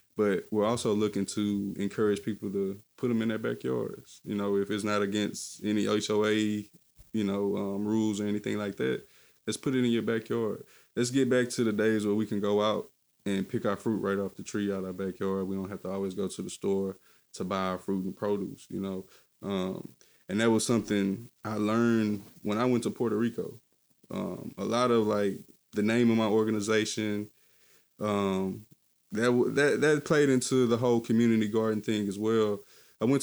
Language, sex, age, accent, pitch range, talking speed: English, male, 20-39, American, 100-115 Hz, 205 wpm